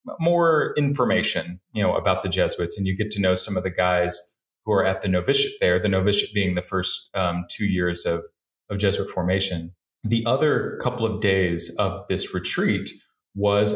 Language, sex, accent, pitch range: English, male, American, 95-115 Hz